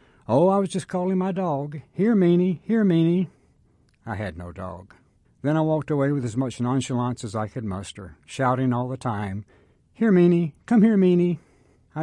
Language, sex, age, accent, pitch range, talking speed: English, male, 60-79, American, 100-140 Hz, 185 wpm